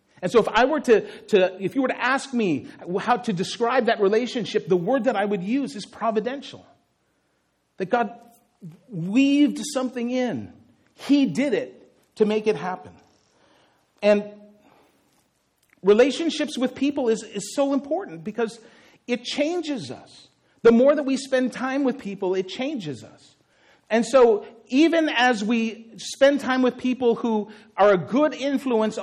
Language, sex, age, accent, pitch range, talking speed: English, male, 40-59, American, 175-250 Hz, 155 wpm